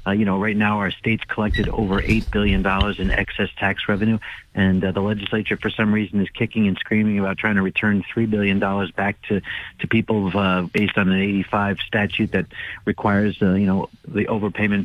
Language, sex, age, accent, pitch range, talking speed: English, male, 50-69, American, 100-115 Hz, 200 wpm